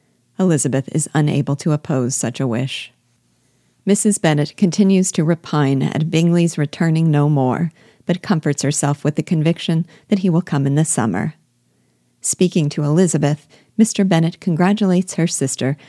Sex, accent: female, American